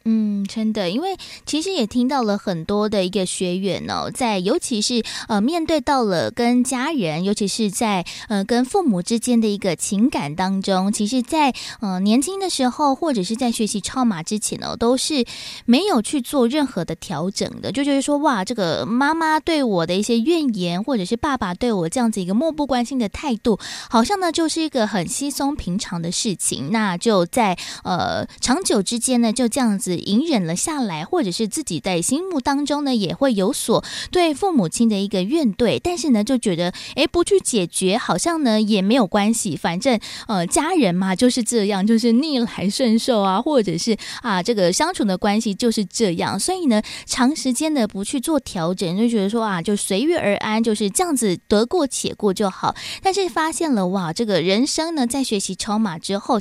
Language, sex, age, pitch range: Chinese, female, 20-39, 200-275 Hz